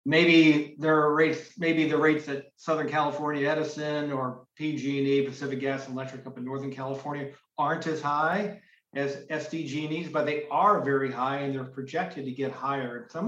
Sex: male